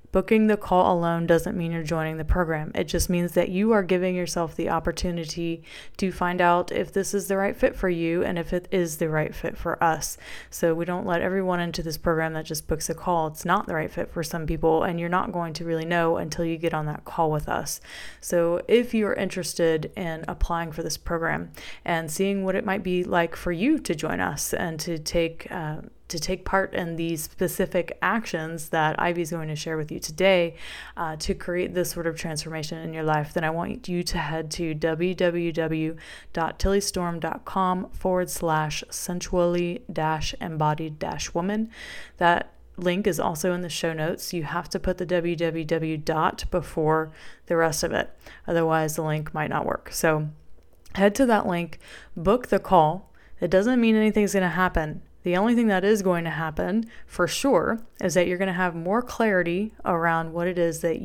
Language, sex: English, female